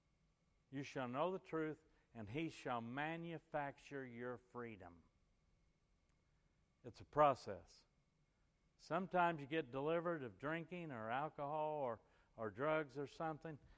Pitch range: 120-170 Hz